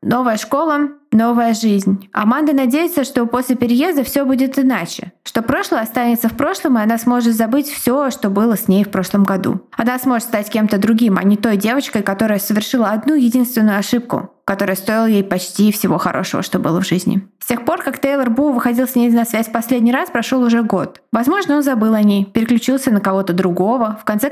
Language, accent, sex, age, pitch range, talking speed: Russian, native, female, 20-39, 195-245 Hz, 200 wpm